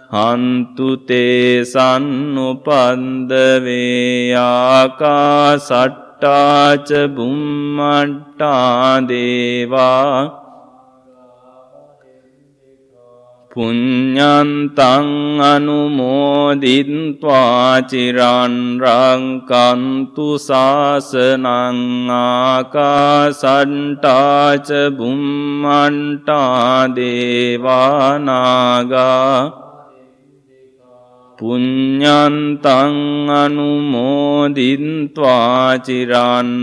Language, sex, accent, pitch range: English, male, Indian, 125-145 Hz